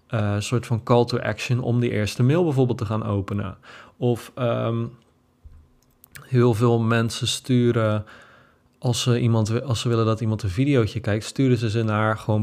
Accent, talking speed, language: Dutch, 180 wpm, Dutch